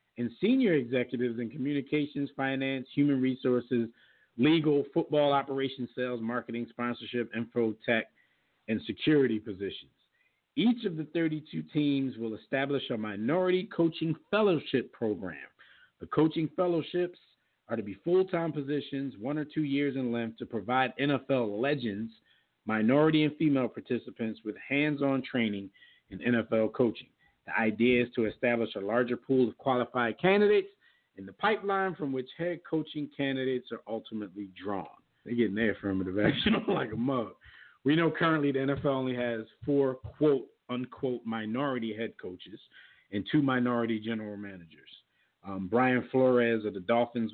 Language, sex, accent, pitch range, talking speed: English, male, American, 115-150 Hz, 145 wpm